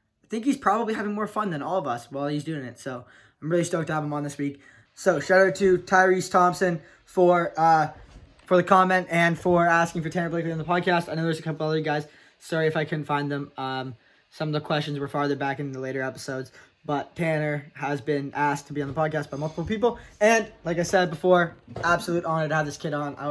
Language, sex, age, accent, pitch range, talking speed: English, male, 20-39, American, 145-180 Hz, 245 wpm